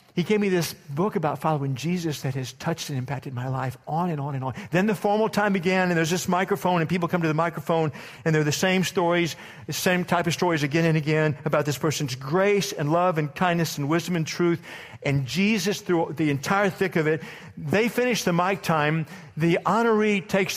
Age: 50-69